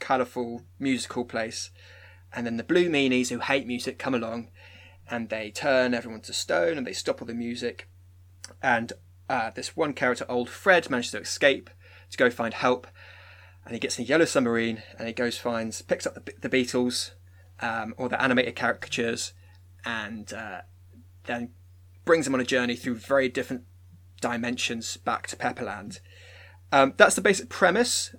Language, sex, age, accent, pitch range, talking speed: English, male, 20-39, British, 95-130 Hz, 170 wpm